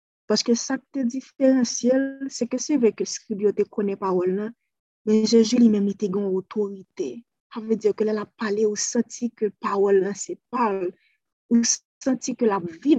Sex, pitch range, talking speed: female, 200-235 Hz, 185 wpm